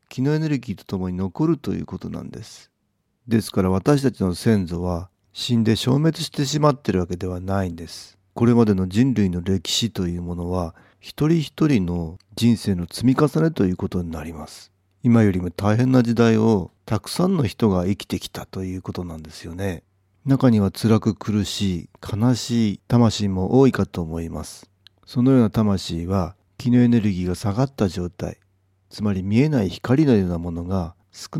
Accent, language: native, Japanese